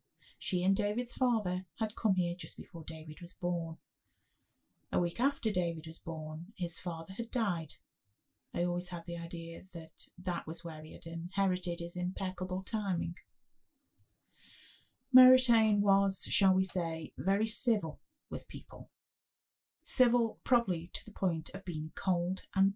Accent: British